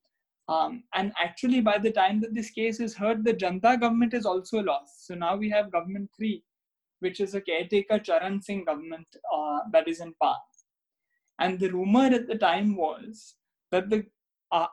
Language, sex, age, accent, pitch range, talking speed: English, male, 20-39, Indian, 175-220 Hz, 185 wpm